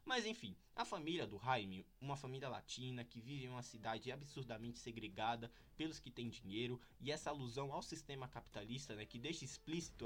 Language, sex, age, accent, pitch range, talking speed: Portuguese, male, 20-39, Brazilian, 115-150 Hz, 180 wpm